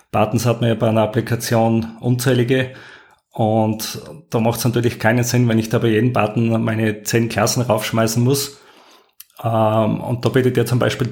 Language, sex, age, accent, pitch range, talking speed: German, male, 30-49, Austrian, 115-130 Hz, 175 wpm